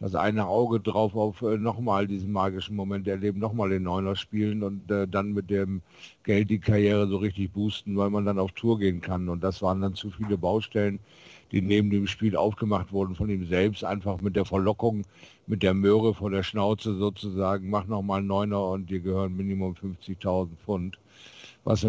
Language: German